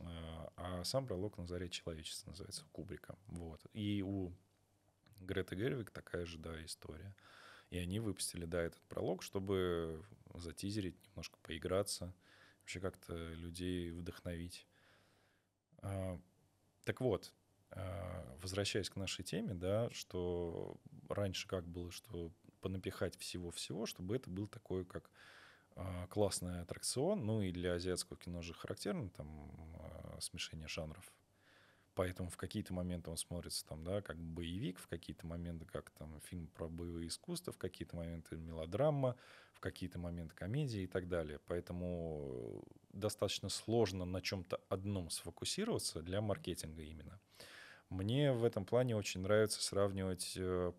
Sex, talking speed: male, 130 wpm